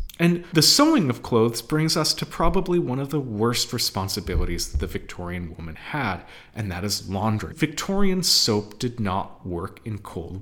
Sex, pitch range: male, 105-165 Hz